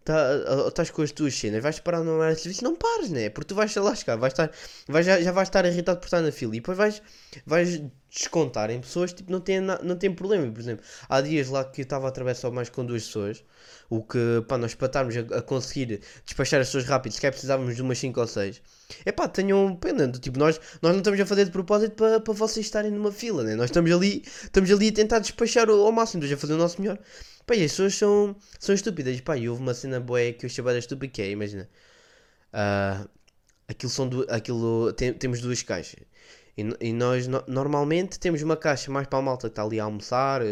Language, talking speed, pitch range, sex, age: Portuguese, 235 wpm, 120-185 Hz, male, 20-39